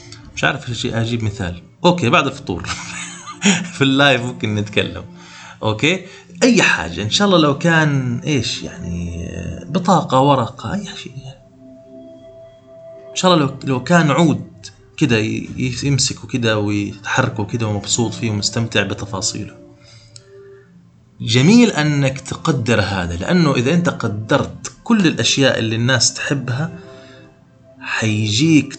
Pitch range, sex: 110-160 Hz, male